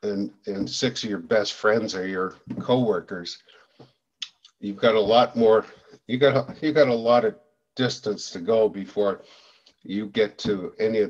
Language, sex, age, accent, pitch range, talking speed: English, male, 50-69, American, 105-140 Hz, 175 wpm